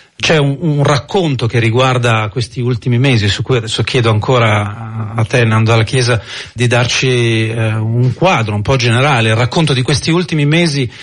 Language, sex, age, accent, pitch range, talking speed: Italian, male, 40-59, native, 115-140 Hz, 180 wpm